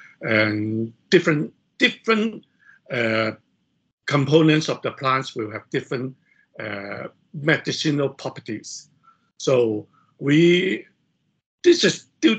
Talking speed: 90 wpm